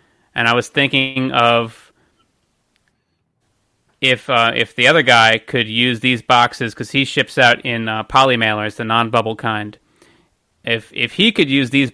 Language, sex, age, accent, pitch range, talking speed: English, male, 30-49, American, 115-140 Hz, 165 wpm